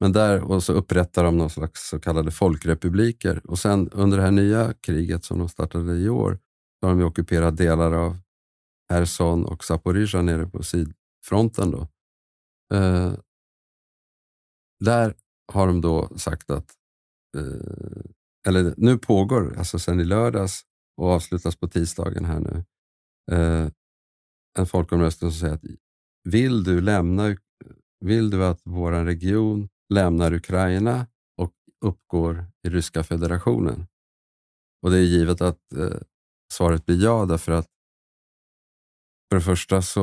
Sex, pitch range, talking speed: male, 80-95 Hz, 140 wpm